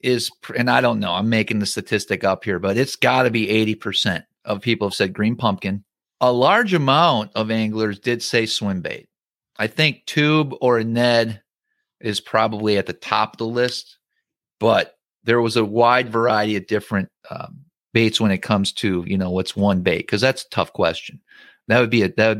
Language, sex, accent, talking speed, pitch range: English, male, American, 205 wpm, 110-135 Hz